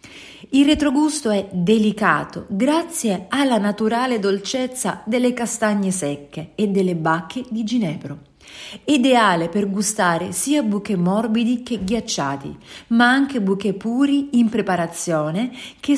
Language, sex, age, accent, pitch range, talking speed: English, female, 40-59, Italian, 190-245 Hz, 115 wpm